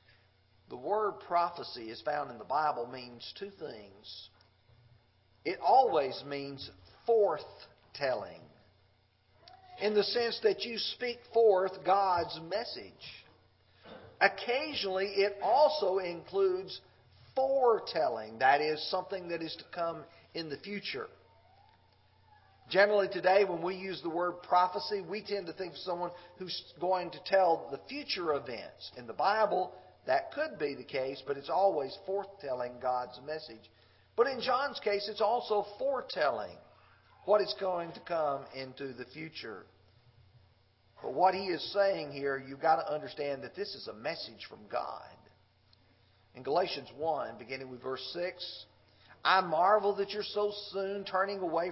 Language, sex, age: English, male, 50-69